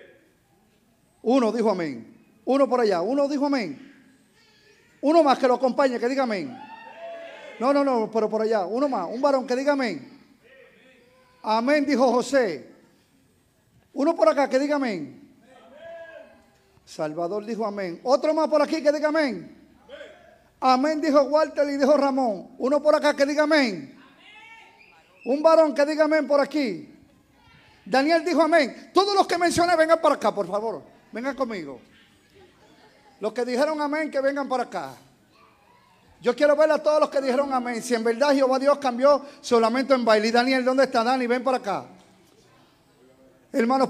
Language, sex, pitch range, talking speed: Spanish, male, 240-295 Hz, 160 wpm